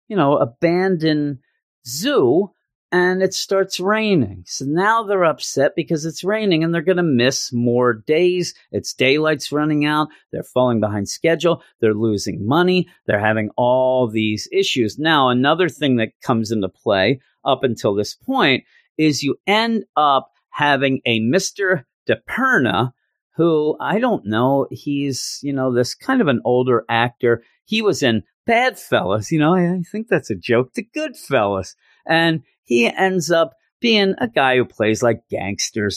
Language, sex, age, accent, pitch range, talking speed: English, male, 40-59, American, 115-165 Hz, 160 wpm